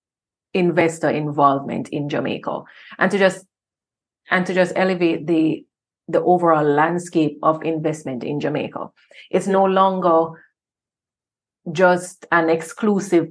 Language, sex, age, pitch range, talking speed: English, female, 30-49, 160-185 Hz, 115 wpm